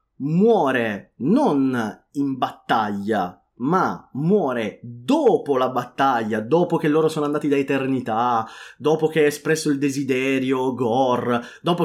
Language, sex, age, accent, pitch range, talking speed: Italian, male, 30-49, native, 130-205 Hz, 120 wpm